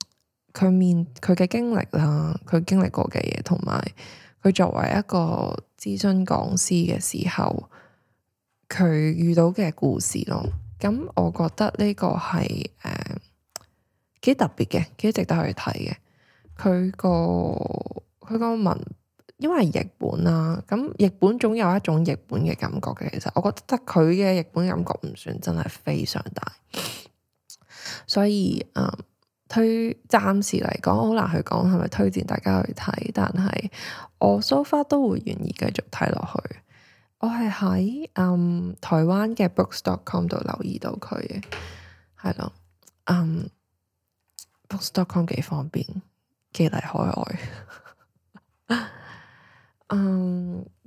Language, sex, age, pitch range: Chinese, female, 10-29, 155-195 Hz